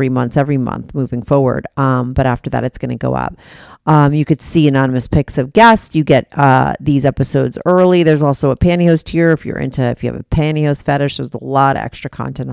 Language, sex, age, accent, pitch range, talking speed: English, female, 40-59, American, 135-165 Hz, 225 wpm